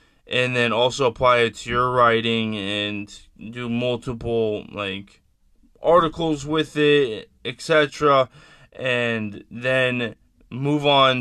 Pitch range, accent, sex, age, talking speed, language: 110-130 Hz, American, male, 20-39, 105 wpm, English